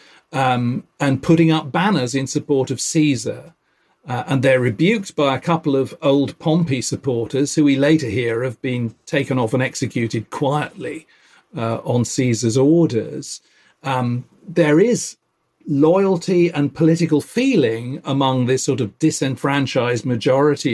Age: 40-59